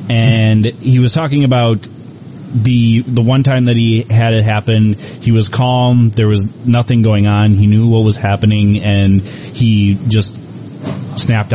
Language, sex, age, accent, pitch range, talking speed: English, male, 30-49, American, 105-125 Hz, 160 wpm